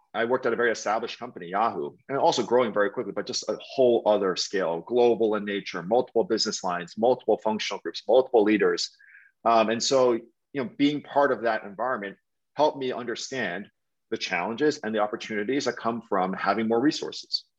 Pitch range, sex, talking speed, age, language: 105-130 Hz, male, 185 wpm, 40-59, English